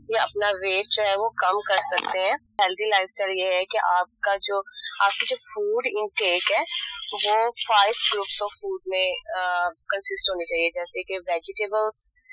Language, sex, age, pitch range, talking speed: Urdu, female, 20-39, 180-245 Hz, 175 wpm